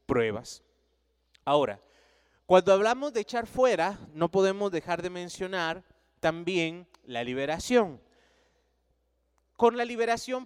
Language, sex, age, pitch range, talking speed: Spanish, male, 30-49, 165-240 Hz, 105 wpm